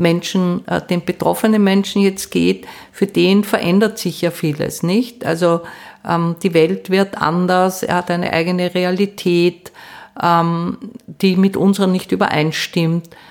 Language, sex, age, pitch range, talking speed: German, female, 50-69, 155-185 Hz, 135 wpm